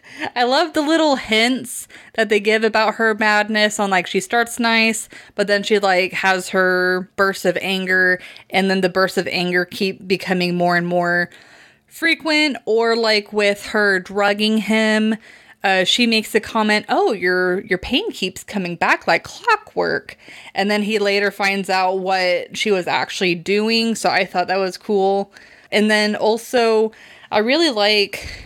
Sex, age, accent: female, 20-39, American